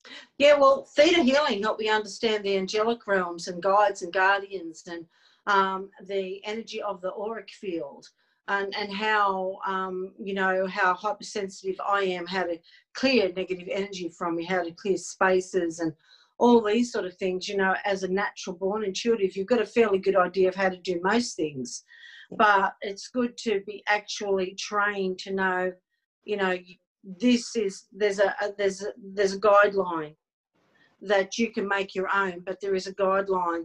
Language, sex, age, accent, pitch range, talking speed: English, female, 50-69, Australian, 185-215 Hz, 180 wpm